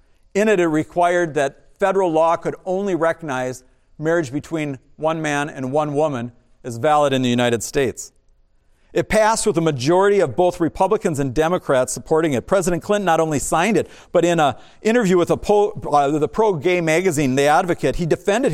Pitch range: 135-175 Hz